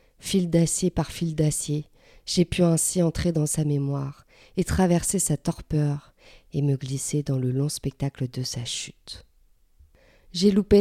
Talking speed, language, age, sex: 155 wpm, French, 40-59, female